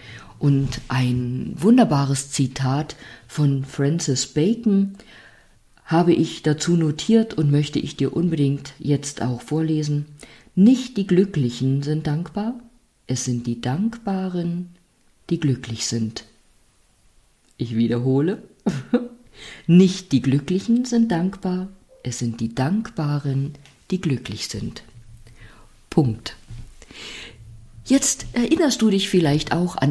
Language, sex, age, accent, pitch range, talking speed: German, female, 50-69, German, 130-175 Hz, 105 wpm